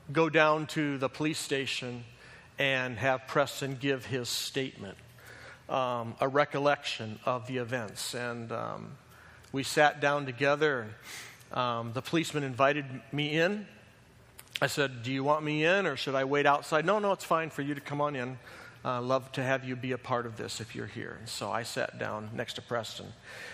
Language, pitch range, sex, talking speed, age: English, 115-140 Hz, male, 185 wpm, 40-59